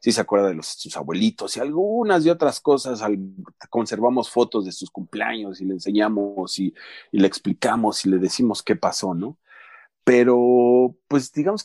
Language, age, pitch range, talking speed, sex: Spanish, 40-59, 100-130 Hz, 180 wpm, male